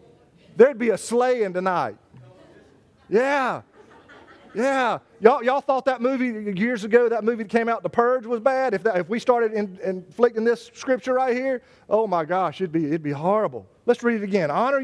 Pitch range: 205-265 Hz